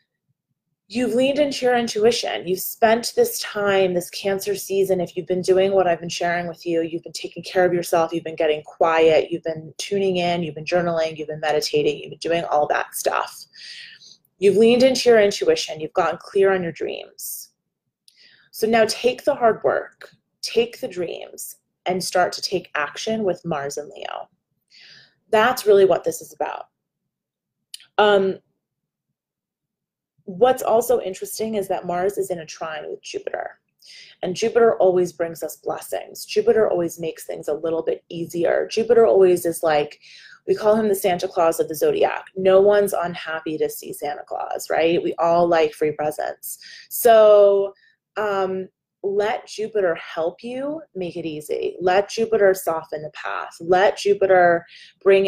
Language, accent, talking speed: English, American, 165 wpm